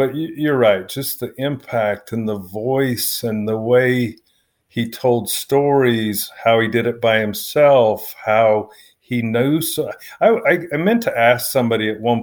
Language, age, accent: English, 50-69, American